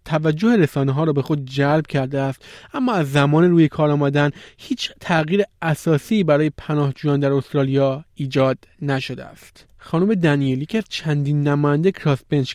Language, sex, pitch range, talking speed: Persian, male, 140-170 Hz, 150 wpm